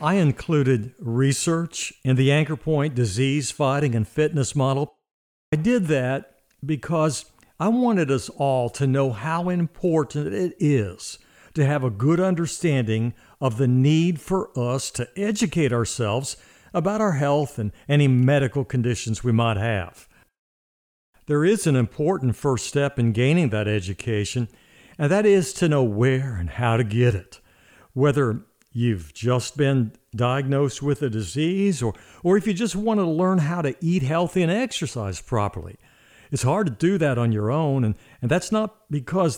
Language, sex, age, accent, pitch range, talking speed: English, male, 60-79, American, 120-155 Hz, 160 wpm